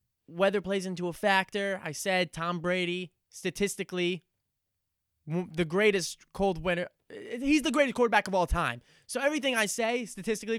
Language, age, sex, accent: English, 20-39, male, American